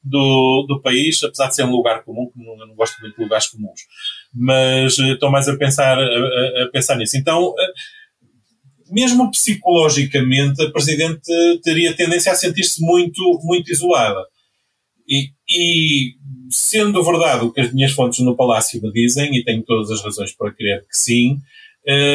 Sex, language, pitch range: male, Portuguese, 120-160 Hz